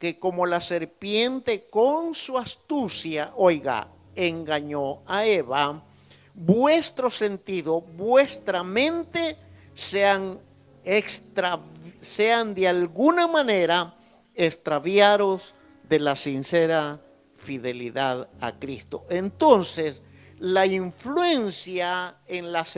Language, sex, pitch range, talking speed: Spanish, male, 170-250 Hz, 85 wpm